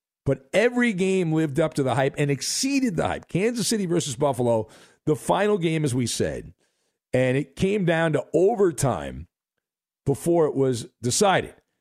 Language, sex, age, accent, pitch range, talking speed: English, male, 50-69, American, 135-200 Hz, 165 wpm